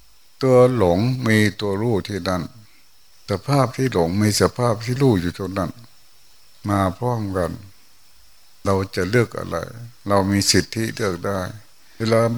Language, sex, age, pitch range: Thai, male, 60-79, 95-125 Hz